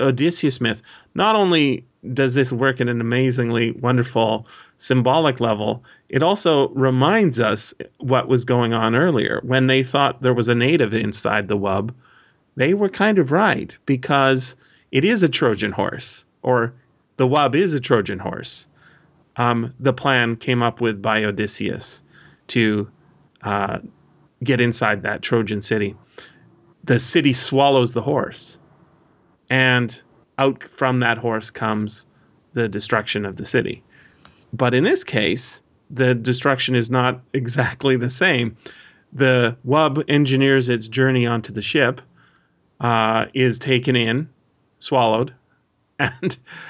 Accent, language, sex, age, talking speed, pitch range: American, English, male, 30-49, 135 wpm, 115-135 Hz